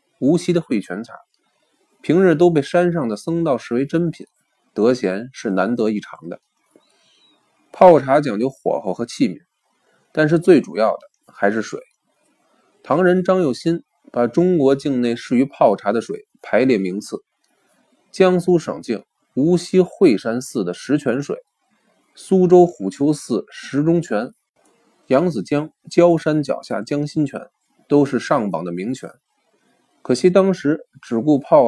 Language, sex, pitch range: Chinese, male, 130-180 Hz